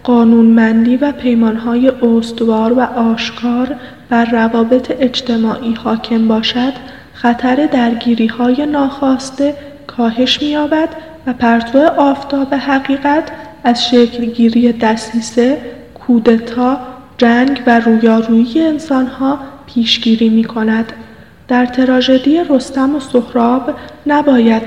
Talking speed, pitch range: 90 wpm, 235-275 Hz